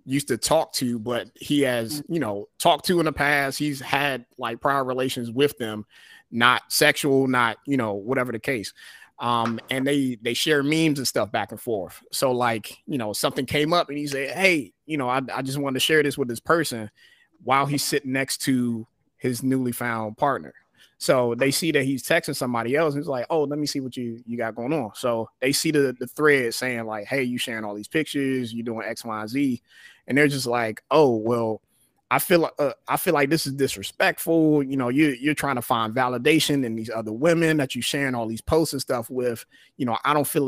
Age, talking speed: 30-49, 230 wpm